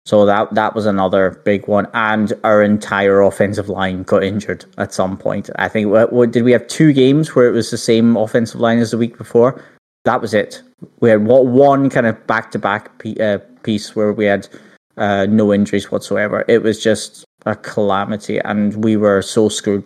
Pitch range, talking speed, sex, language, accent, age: 100-130 Hz, 195 wpm, male, English, British, 20-39